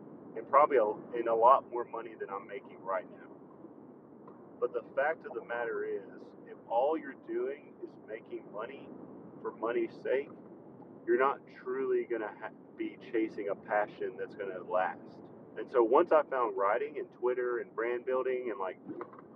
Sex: male